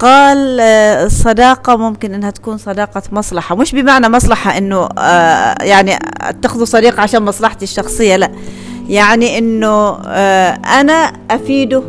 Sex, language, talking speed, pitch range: female, Arabic, 110 wpm, 195-260 Hz